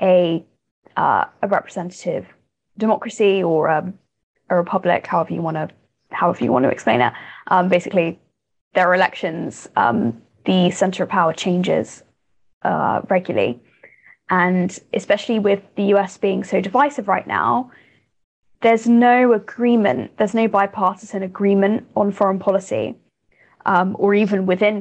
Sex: female